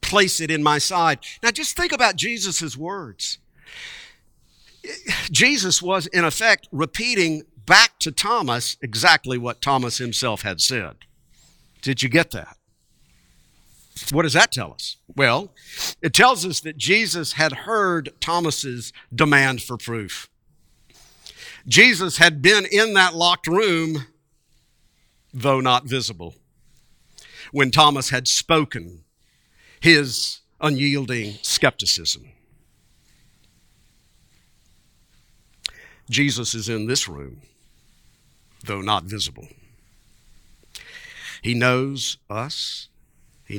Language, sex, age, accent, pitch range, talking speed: English, male, 50-69, American, 115-165 Hz, 105 wpm